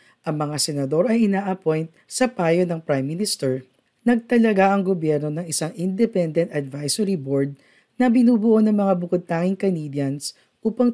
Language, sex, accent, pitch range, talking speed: Filipino, female, native, 145-205 Hz, 135 wpm